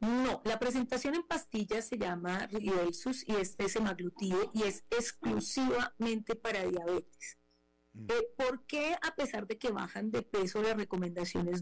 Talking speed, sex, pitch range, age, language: 150 wpm, female, 195-245 Hz, 30-49, Spanish